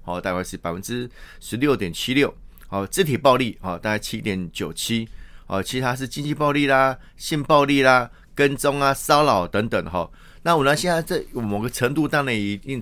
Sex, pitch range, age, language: male, 100-130 Hz, 30-49, Chinese